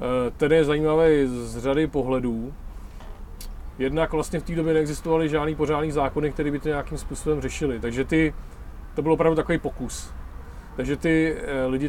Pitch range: 125-150 Hz